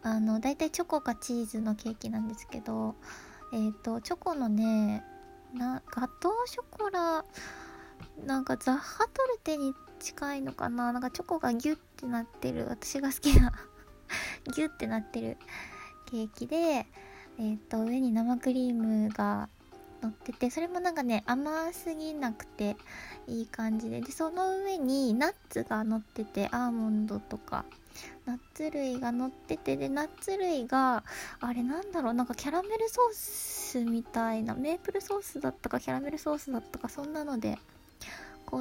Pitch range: 225-310 Hz